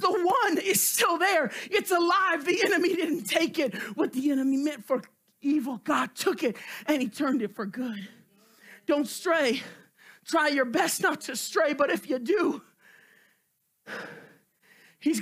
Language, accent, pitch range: English, American, 290-360 Hz